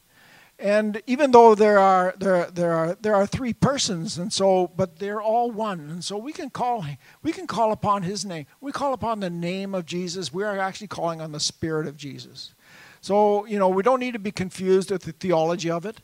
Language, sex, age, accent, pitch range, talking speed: English, male, 50-69, American, 170-210 Hz, 220 wpm